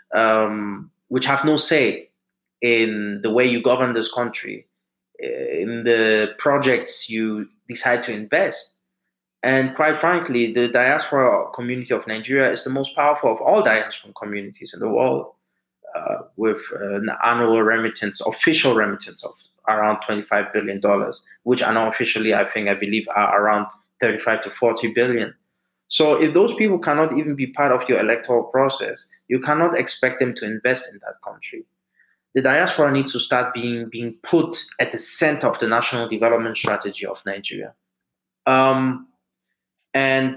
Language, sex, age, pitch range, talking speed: English, male, 20-39, 115-135 Hz, 155 wpm